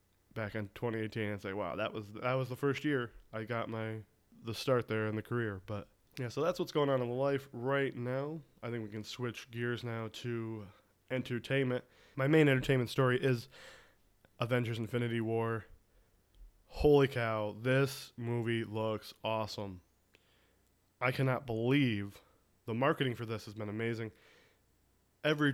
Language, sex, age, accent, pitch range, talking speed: English, male, 20-39, American, 105-125 Hz, 160 wpm